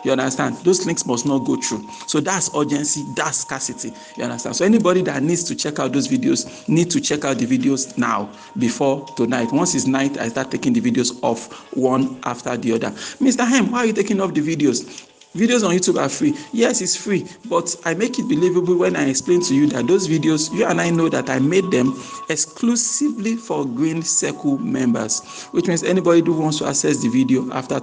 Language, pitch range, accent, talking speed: English, 135-210 Hz, Nigerian, 215 wpm